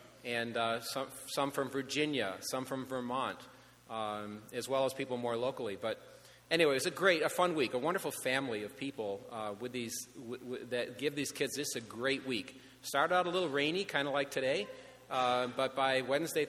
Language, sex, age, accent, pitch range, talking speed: English, male, 40-59, American, 120-140 Hz, 205 wpm